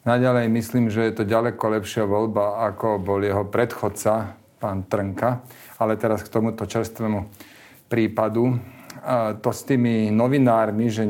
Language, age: Slovak, 40-59